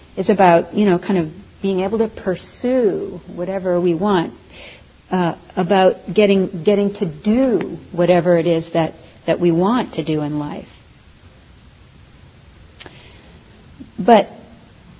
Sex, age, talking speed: female, 50-69, 125 wpm